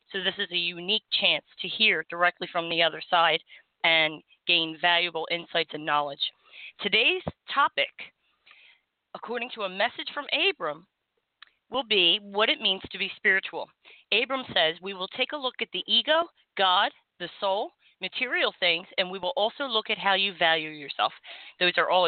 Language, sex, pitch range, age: English, female, 170-225 Hz, 30-49